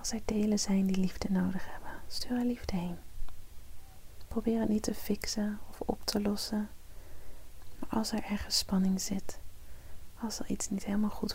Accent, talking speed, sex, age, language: Dutch, 175 wpm, female, 30-49, Dutch